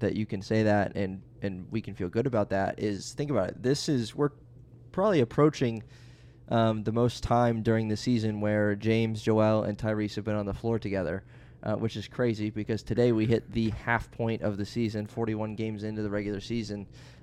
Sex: male